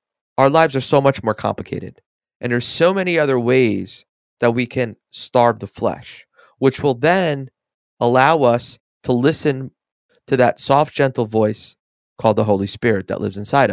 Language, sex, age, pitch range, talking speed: English, male, 30-49, 110-150 Hz, 165 wpm